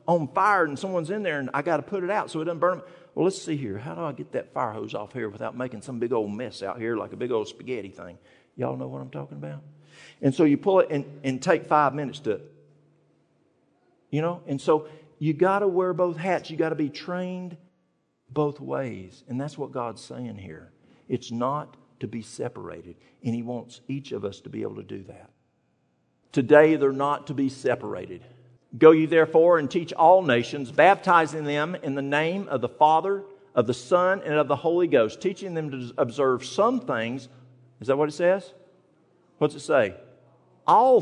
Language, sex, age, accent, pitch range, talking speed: English, male, 50-69, American, 125-170 Hz, 215 wpm